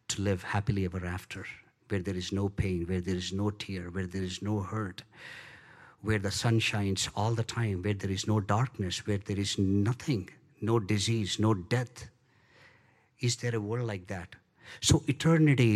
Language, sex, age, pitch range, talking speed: English, male, 50-69, 100-120 Hz, 185 wpm